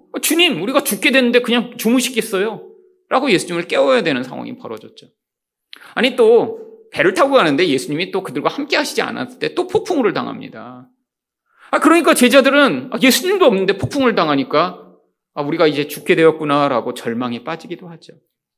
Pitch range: 205-310 Hz